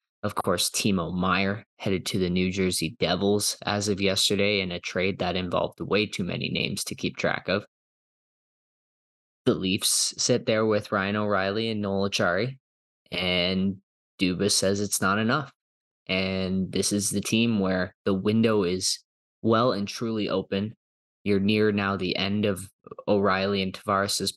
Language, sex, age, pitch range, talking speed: English, male, 20-39, 95-110 Hz, 160 wpm